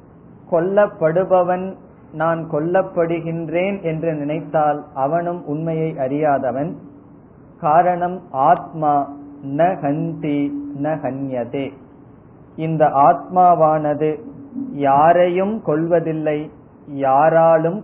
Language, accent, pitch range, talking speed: Tamil, native, 145-180 Hz, 55 wpm